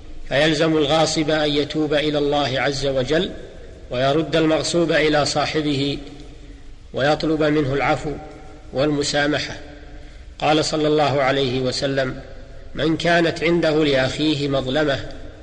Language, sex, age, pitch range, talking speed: Arabic, male, 40-59, 140-160 Hz, 100 wpm